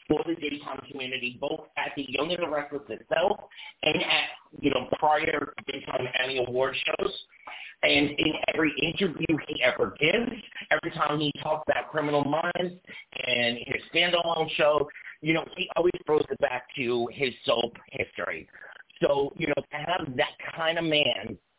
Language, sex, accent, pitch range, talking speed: English, male, American, 135-175 Hz, 160 wpm